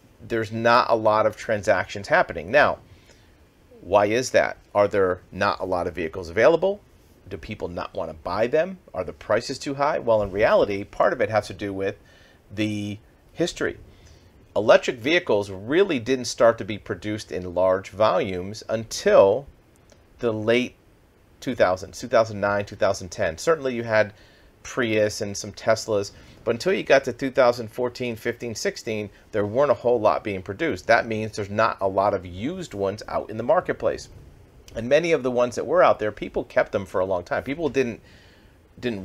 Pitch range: 100-120 Hz